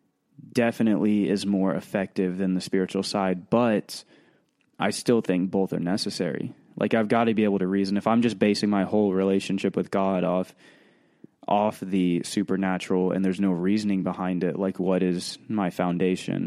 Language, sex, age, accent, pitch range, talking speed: English, male, 20-39, American, 95-105 Hz, 170 wpm